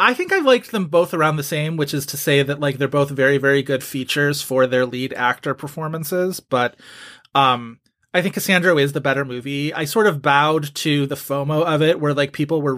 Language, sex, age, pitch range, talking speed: English, male, 30-49, 130-155 Hz, 225 wpm